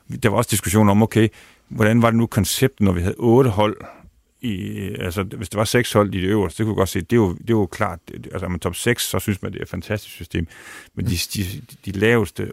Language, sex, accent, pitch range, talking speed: Danish, male, native, 90-110 Hz, 260 wpm